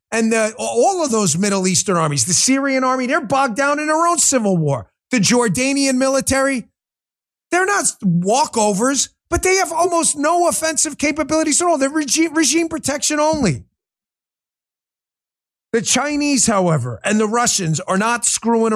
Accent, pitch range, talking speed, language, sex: American, 205-280 Hz, 150 wpm, English, male